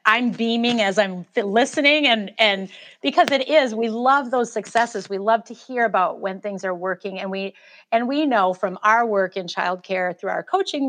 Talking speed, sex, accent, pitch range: 200 wpm, female, American, 200-250 Hz